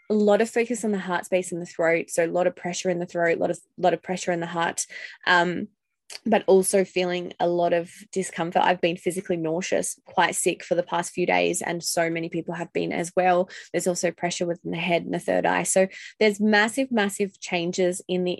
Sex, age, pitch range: female, 20-39, 175-200 Hz